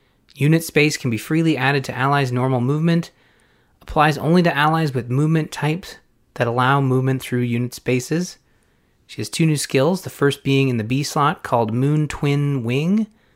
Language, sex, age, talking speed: English, male, 30-49, 175 wpm